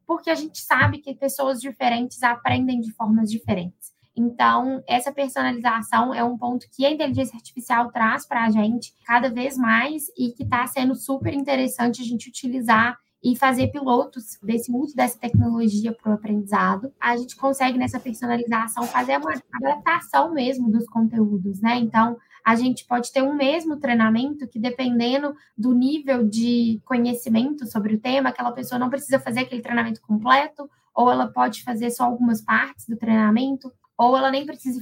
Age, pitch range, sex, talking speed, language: 10-29, 225-260 Hz, female, 165 wpm, Portuguese